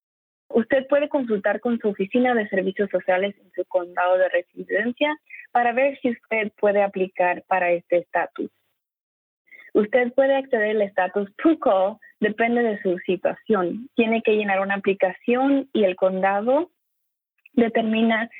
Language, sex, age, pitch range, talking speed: English, female, 20-39, 185-240 Hz, 135 wpm